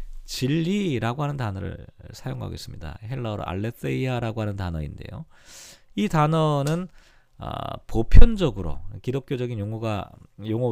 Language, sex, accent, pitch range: Korean, male, native, 110-160 Hz